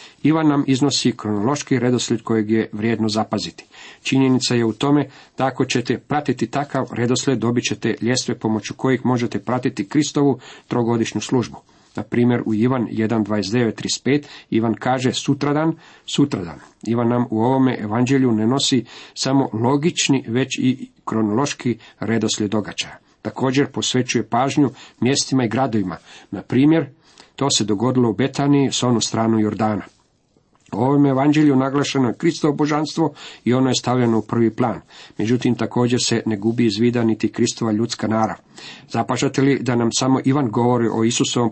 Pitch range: 110-135 Hz